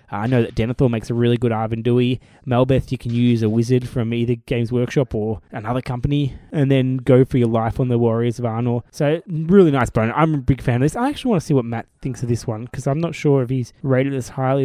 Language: English